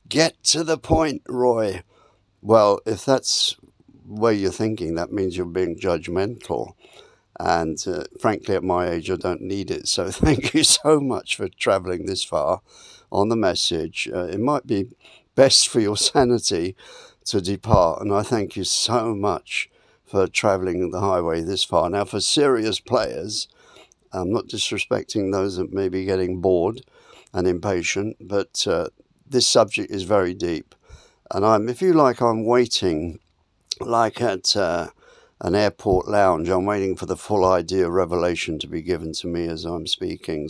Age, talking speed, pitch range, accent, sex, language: 60-79, 165 wpm, 90-115 Hz, British, male, English